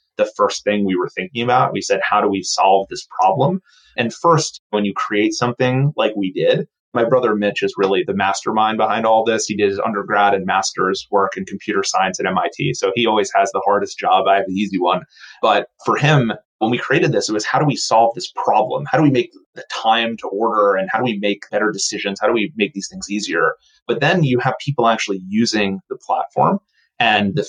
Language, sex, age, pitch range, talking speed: English, male, 30-49, 100-145 Hz, 230 wpm